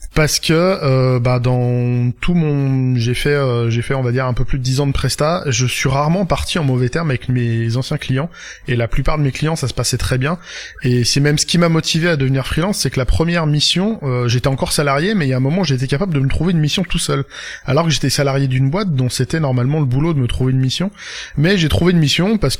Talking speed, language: 270 wpm, French